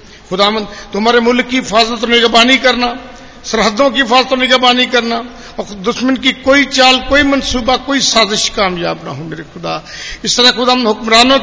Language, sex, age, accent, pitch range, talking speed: Hindi, male, 50-69, native, 215-265 Hz, 160 wpm